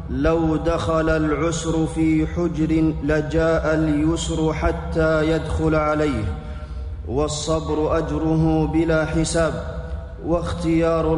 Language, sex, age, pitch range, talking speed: Arabic, male, 30-49, 130-155 Hz, 80 wpm